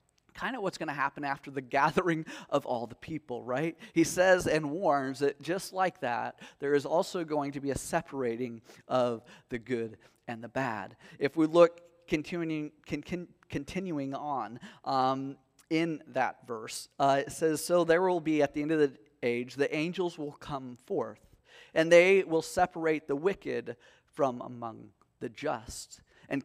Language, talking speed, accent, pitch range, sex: English, 175 wpm, American, 125-160 Hz, male